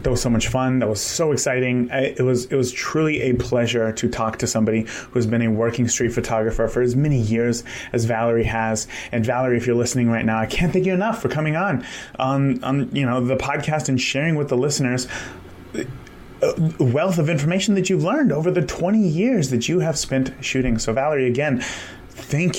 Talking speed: 215 wpm